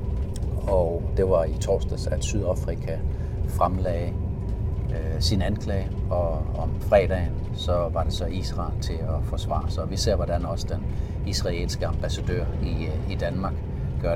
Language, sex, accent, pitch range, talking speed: Danish, male, native, 85-100 Hz, 150 wpm